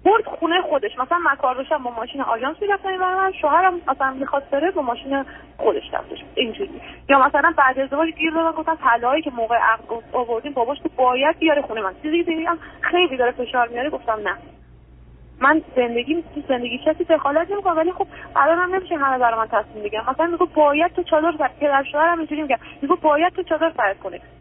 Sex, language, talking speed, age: female, Persian, 200 wpm, 30-49